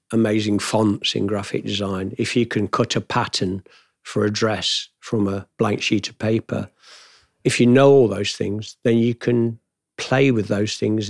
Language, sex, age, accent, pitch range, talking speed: English, male, 50-69, British, 100-115 Hz, 180 wpm